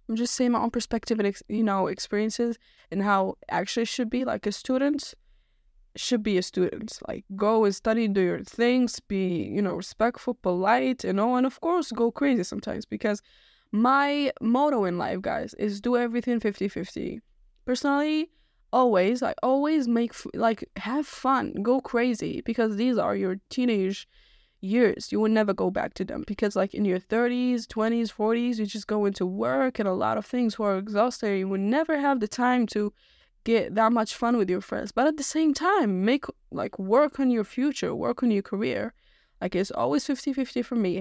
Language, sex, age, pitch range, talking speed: English, female, 20-39, 200-250 Hz, 195 wpm